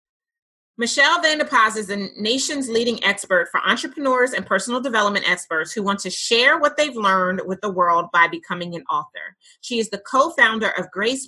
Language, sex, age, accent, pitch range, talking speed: English, female, 30-49, American, 195-270 Hz, 175 wpm